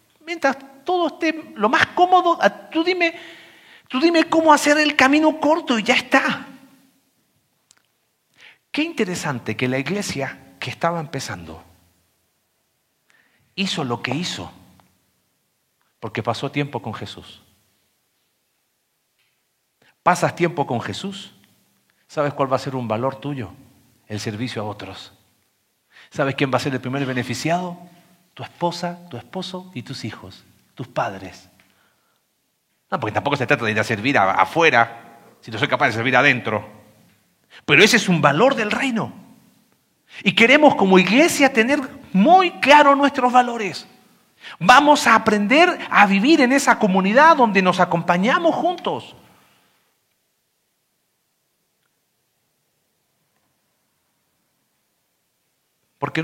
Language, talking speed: Spanish, 120 wpm